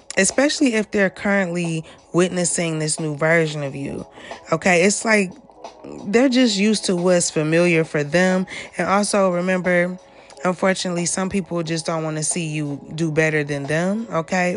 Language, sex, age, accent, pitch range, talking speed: English, female, 20-39, American, 160-195 Hz, 155 wpm